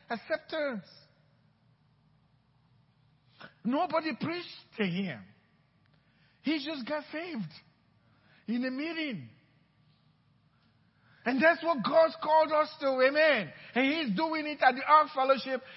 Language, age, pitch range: English, 50-69, 150-250 Hz